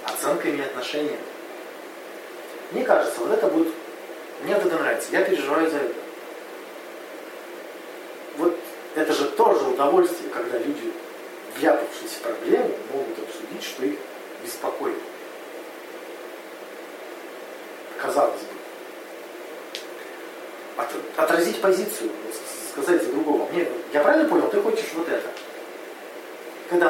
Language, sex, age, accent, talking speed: Russian, male, 40-59, native, 105 wpm